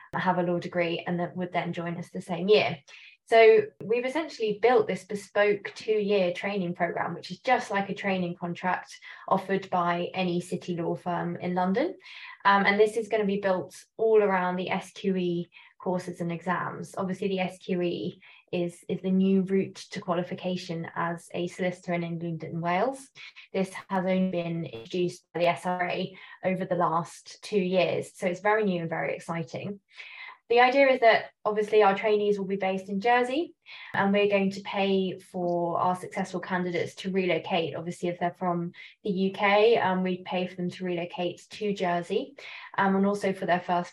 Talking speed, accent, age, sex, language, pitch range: 180 wpm, British, 20-39, female, English, 175-200 Hz